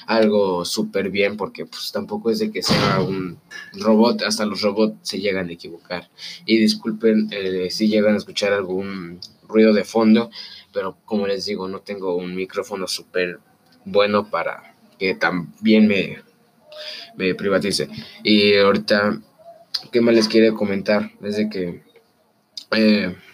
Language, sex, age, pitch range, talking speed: English, male, 20-39, 100-110 Hz, 145 wpm